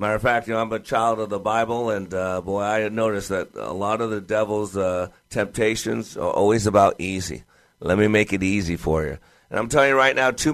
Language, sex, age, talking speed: English, male, 50-69, 240 wpm